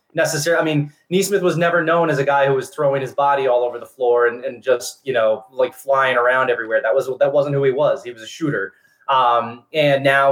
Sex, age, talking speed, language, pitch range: male, 20-39, 245 wpm, English, 130-180 Hz